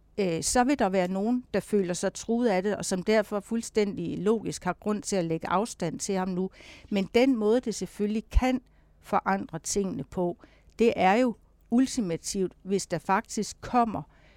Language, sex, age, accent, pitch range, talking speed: Danish, female, 60-79, native, 180-215 Hz, 175 wpm